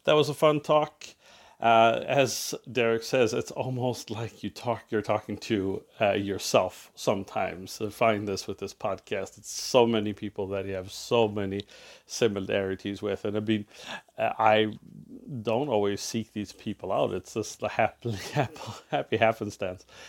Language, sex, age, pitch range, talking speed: English, male, 40-59, 105-115 Hz, 160 wpm